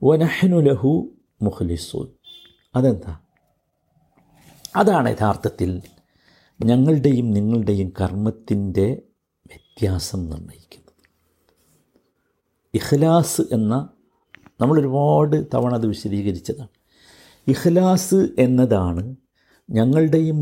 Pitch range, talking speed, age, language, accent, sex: 100-150 Hz, 60 wpm, 50-69, Malayalam, native, male